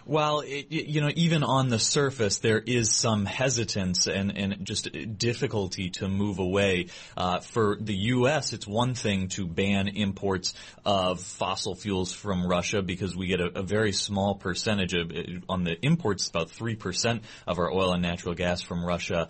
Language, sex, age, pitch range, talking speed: English, male, 30-49, 90-110 Hz, 170 wpm